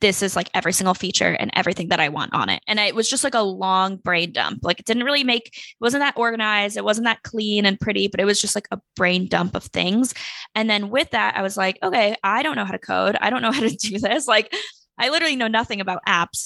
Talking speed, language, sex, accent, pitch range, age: 275 wpm, English, female, American, 185-225 Hz, 10-29